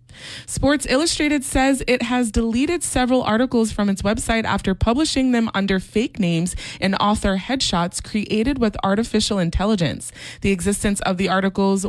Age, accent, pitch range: 20-39, American, 185-240 Hz